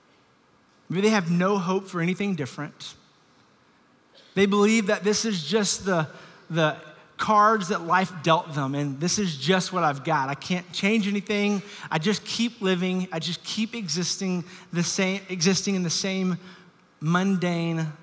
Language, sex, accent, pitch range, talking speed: English, male, American, 150-195 Hz, 155 wpm